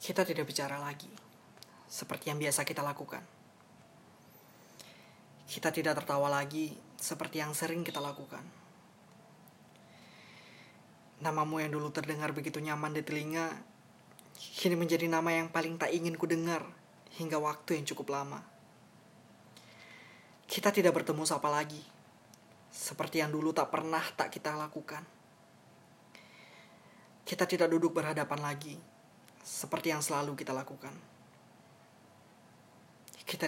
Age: 20-39